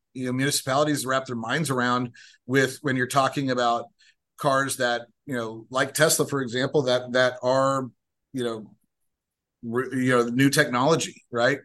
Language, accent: English, American